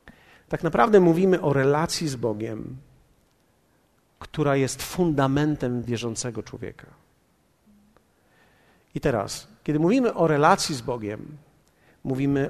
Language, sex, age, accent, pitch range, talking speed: Polish, male, 50-69, native, 120-150 Hz, 100 wpm